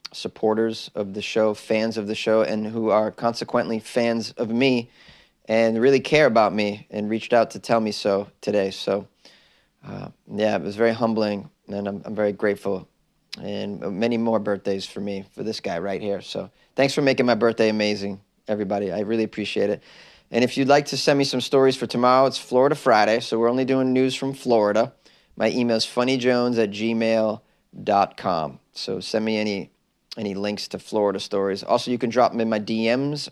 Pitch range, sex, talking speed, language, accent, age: 105-125 Hz, male, 190 wpm, English, American, 20-39